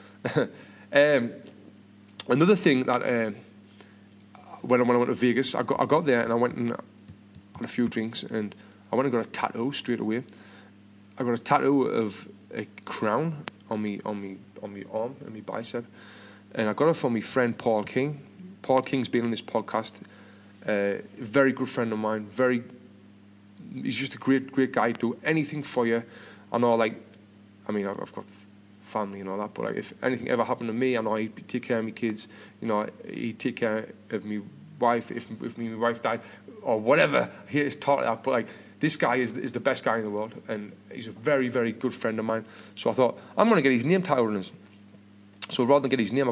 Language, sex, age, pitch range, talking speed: English, male, 30-49, 105-130 Hz, 215 wpm